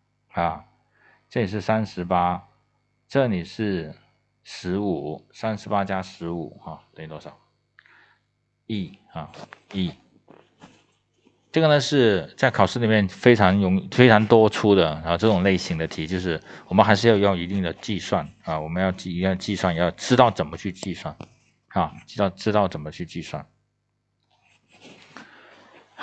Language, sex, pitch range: Chinese, male, 90-120 Hz